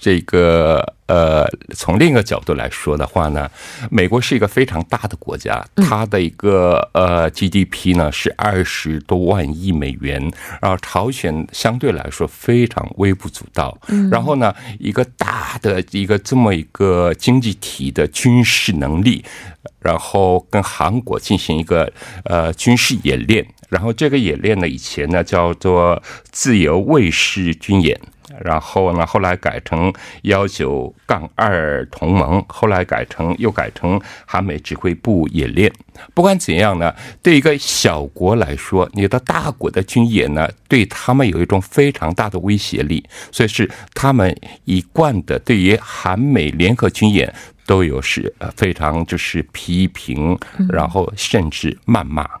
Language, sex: Korean, male